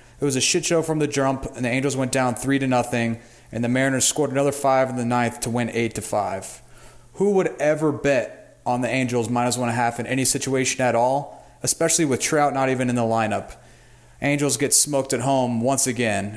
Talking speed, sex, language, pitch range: 225 wpm, male, English, 120-140 Hz